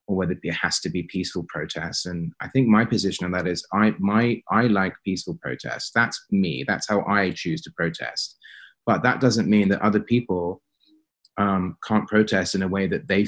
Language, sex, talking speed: English, male, 205 wpm